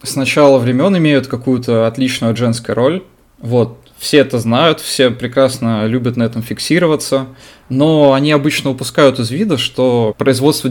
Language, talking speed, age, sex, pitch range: Russian, 145 wpm, 20-39, male, 110-135 Hz